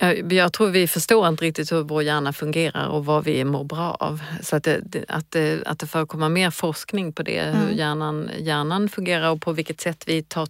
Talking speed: 215 wpm